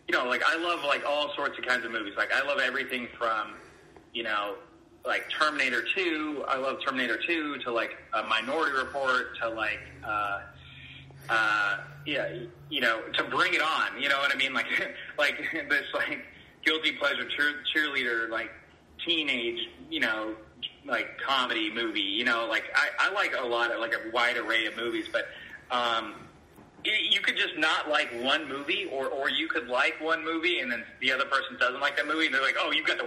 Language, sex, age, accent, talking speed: English, male, 30-49, American, 200 wpm